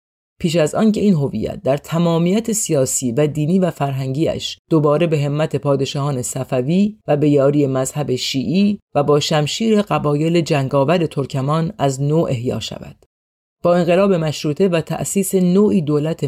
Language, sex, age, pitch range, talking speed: Persian, female, 30-49, 135-165 Hz, 145 wpm